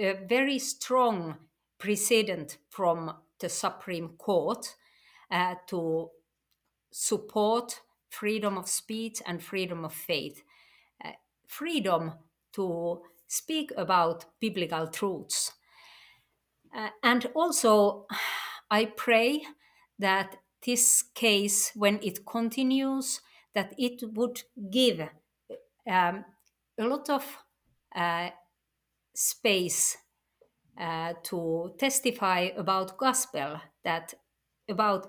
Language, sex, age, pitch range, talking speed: English, female, 50-69, 180-245 Hz, 90 wpm